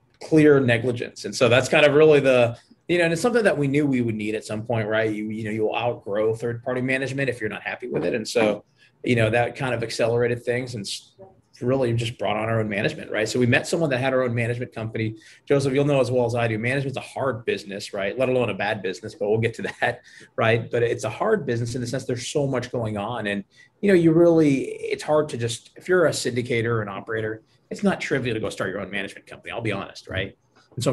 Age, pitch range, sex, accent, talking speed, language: 30-49, 110-135 Hz, male, American, 260 wpm, English